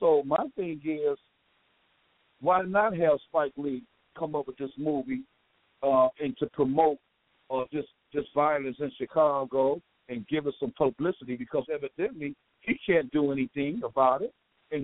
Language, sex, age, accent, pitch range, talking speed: English, male, 60-79, American, 145-195 Hz, 155 wpm